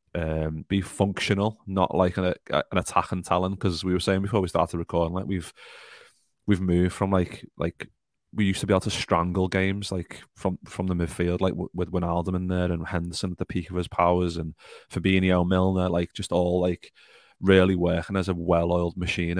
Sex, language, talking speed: male, English, 200 wpm